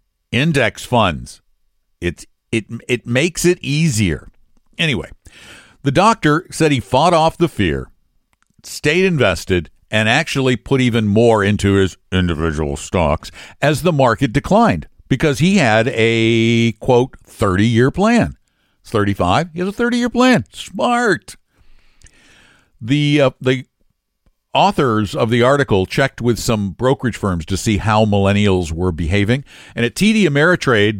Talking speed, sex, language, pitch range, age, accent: 135 wpm, male, English, 100-145 Hz, 60-79, American